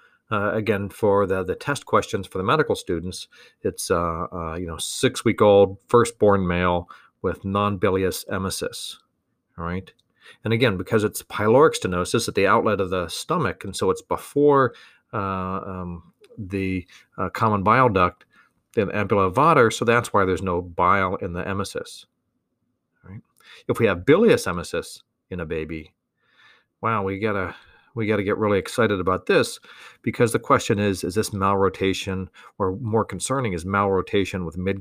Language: English